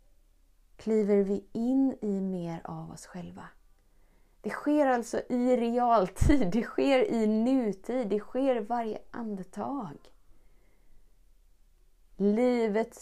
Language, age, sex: Swedish, 30-49, female